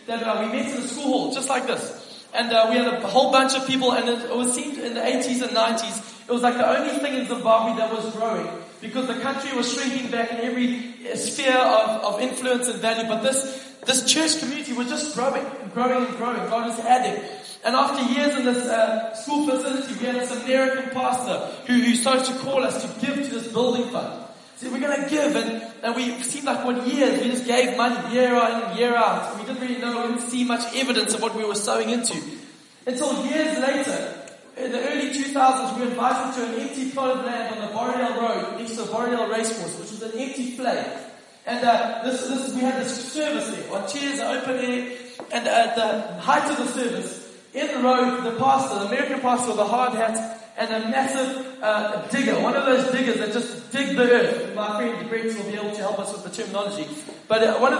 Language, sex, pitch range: English, male, 230-265 Hz